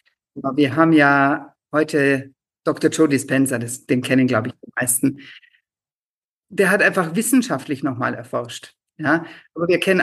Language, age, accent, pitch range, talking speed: German, 50-69, German, 135-175 Hz, 140 wpm